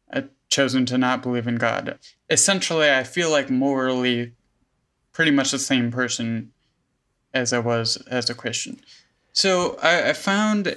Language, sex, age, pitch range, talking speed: English, male, 20-39, 125-155 Hz, 145 wpm